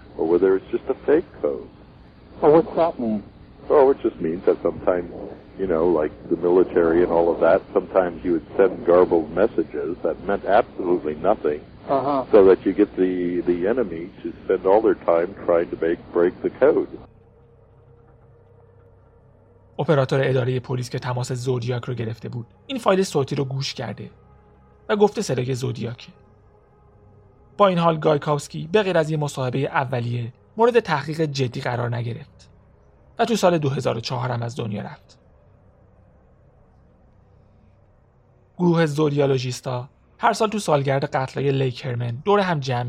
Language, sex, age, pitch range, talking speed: Persian, male, 60-79, 115-155 Hz, 145 wpm